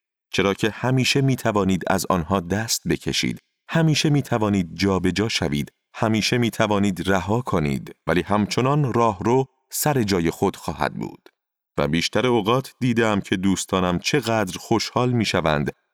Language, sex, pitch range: Persian, male, 85-125 Hz